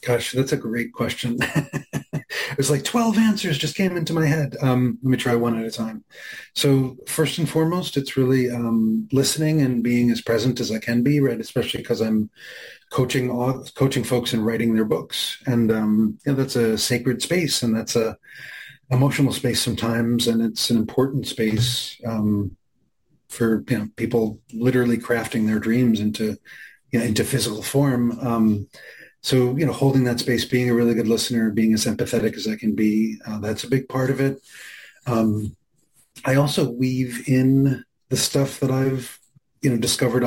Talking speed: 180 wpm